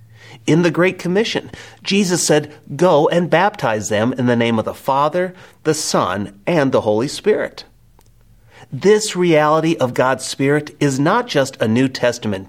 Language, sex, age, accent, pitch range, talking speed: English, male, 40-59, American, 115-160 Hz, 160 wpm